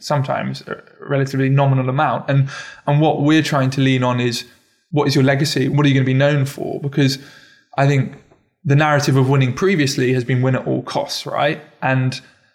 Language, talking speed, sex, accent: English, 195 wpm, male, British